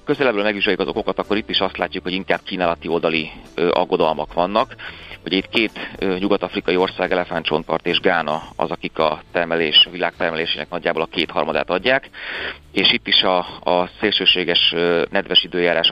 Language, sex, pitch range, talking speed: Hungarian, male, 85-95 Hz, 160 wpm